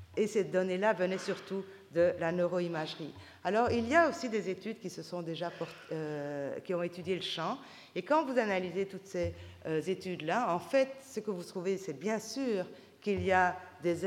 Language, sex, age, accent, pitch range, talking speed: French, female, 50-69, French, 160-210 Hz, 200 wpm